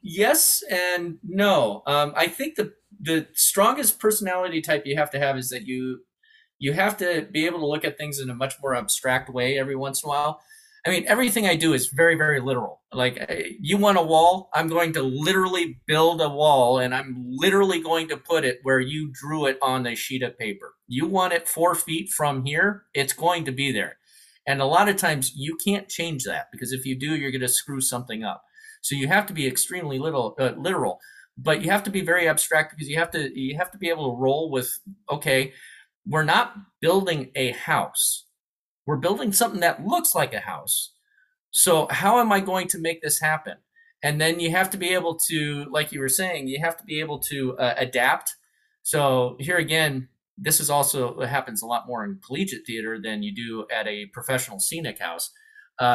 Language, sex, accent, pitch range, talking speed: English, male, American, 135-185 Hz, 215 wpm